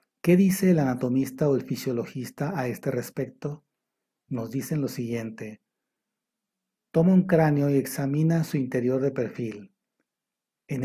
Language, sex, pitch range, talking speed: Spanish, male, 130-155 Hz, 135 wpm